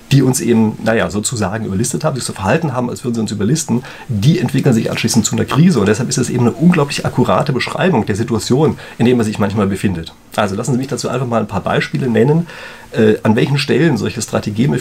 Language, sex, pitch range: German, male, 105-140 Hz